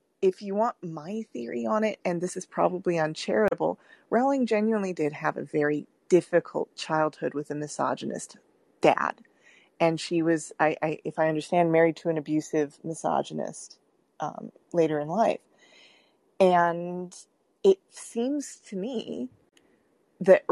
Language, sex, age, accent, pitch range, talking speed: English, female, 30-49, American, 155-185 Hz, 130 wpm